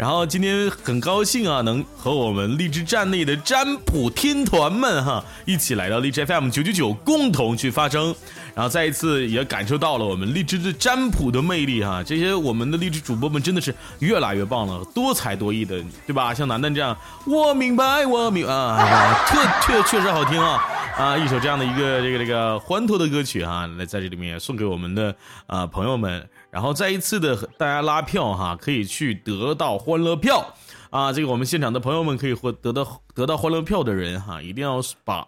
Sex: male